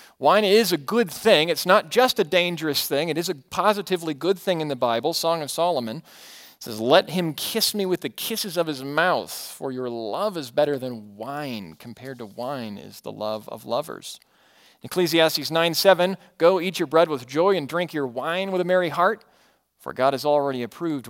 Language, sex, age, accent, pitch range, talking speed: English, male, 40-59, American, 135-185 Hz, 200 wpm